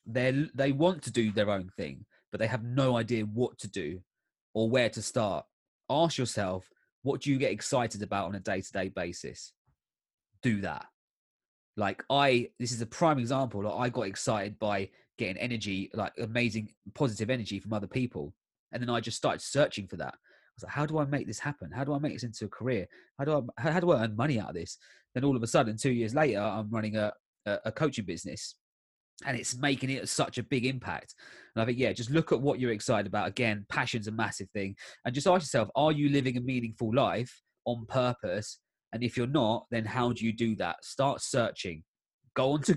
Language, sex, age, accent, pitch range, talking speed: English, male, 30-49, British, 105-130 Hz, 225 wpm